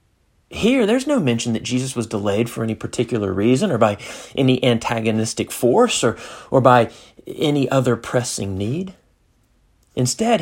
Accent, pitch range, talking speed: American, 120-165 Hz, 145 wpm